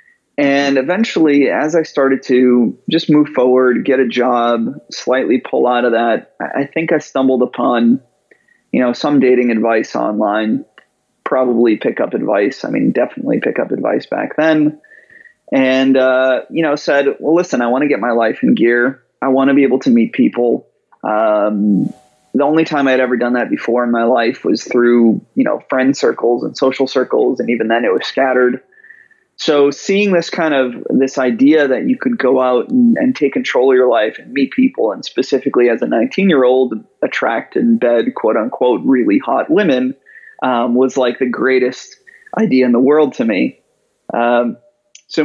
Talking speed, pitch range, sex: 185 wpm, 125-195 Hz, male